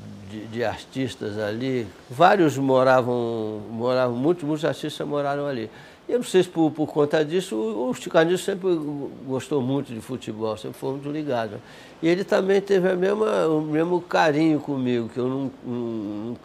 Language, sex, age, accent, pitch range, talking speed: Portuguese, male, 60-79, Brazilian, 120-160 Hz, 170 wpm